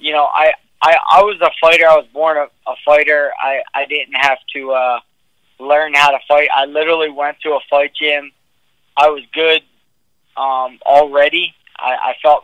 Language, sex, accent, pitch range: English, male, American, 130-145 Hz